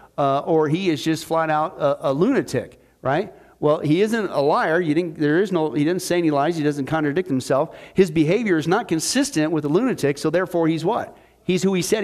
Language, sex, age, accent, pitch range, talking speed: English, male, 40-59, American, 160-210 Hz, 230 wpm